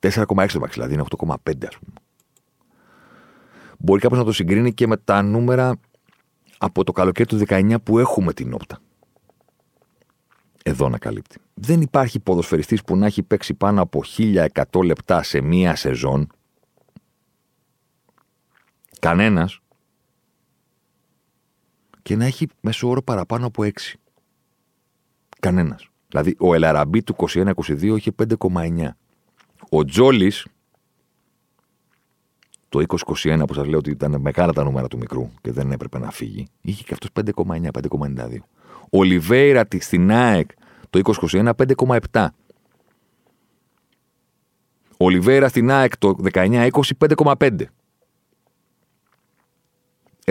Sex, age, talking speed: male, 40-59, 115 wpm